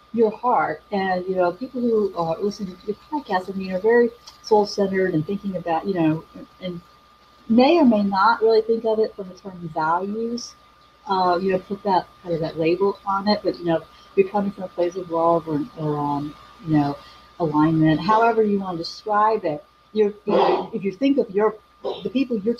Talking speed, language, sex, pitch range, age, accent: 215 wpm, English, female, 160-210 Hz, 40-59, American